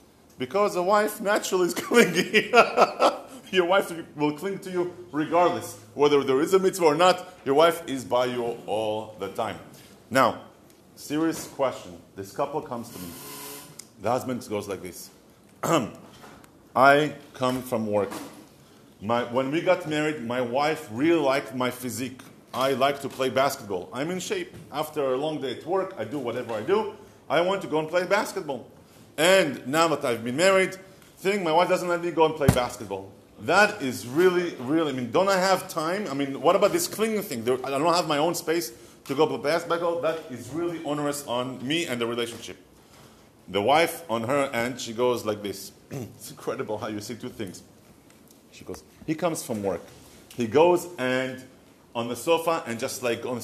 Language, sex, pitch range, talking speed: English, male, 120-175 Hz, 185 wpm